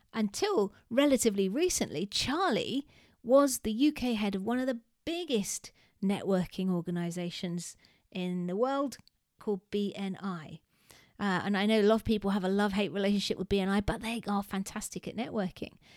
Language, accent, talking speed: English, British, 150 wpm